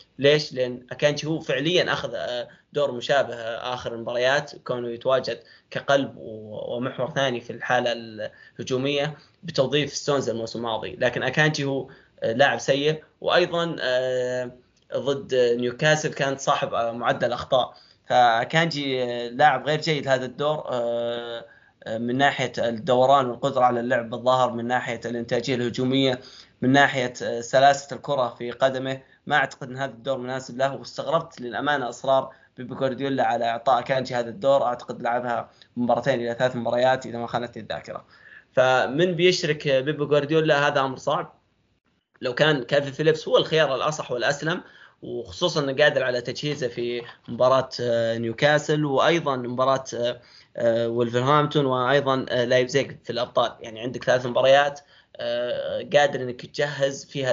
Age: 20-39